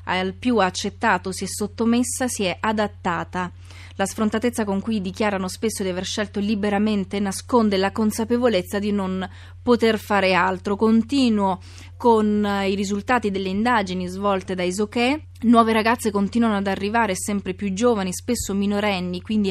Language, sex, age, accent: Italian, female, 20-39, native